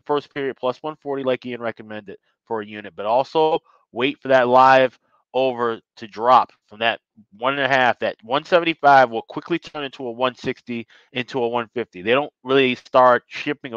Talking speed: 180 wpm